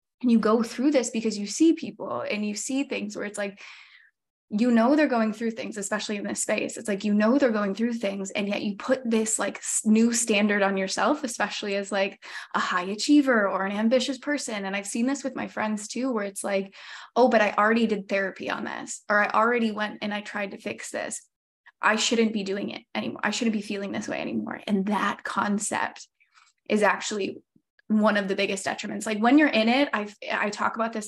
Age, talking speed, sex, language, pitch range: 10-29, 225 wpm, female, English, 205-235 Hz